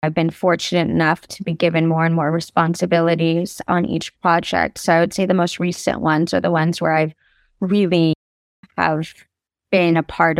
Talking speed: 185 wpm